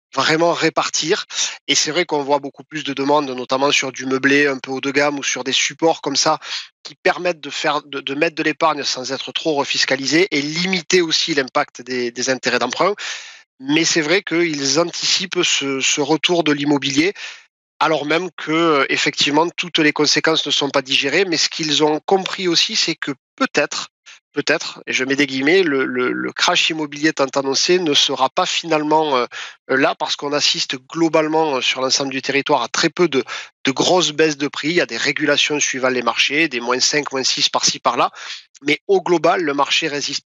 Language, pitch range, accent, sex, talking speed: French, 140-165 Hz, French, male, 200 wpm